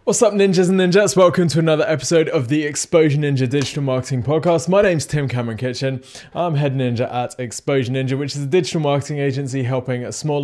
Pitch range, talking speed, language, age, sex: 115-150 Hz, 195 wpm, English, 20-39, male